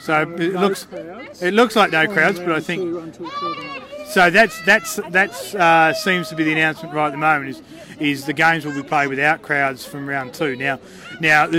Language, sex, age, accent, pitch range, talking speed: English, male, 30-49, Australian, 135-165 Hz, 200 wpm